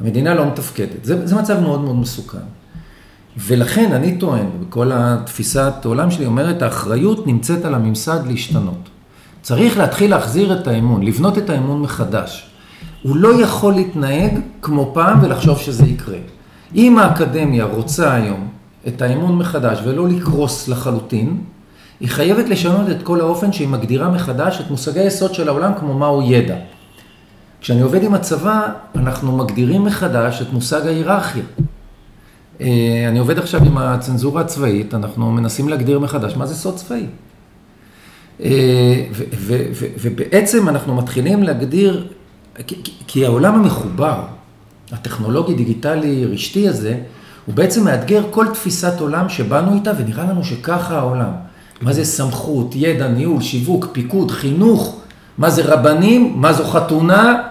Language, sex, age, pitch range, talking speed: Hebrew, male, 40-59, 125-180 Hz, 140 wpm